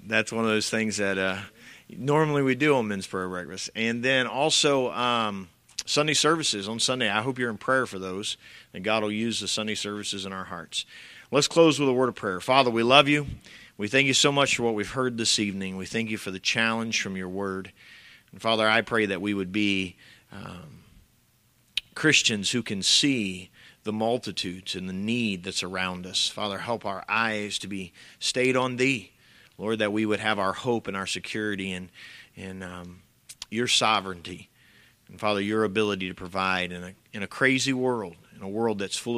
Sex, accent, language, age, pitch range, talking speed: male, American, English, 40-59, 95-115 Hz, 200 wpm